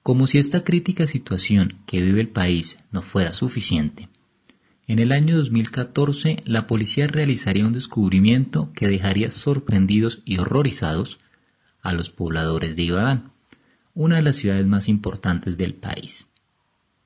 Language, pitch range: Spanish, 95-130 Hz